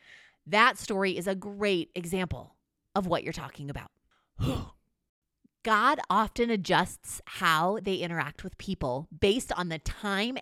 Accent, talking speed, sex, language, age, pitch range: American, 130 wpm, female, English, 20-39, 175-245 Hz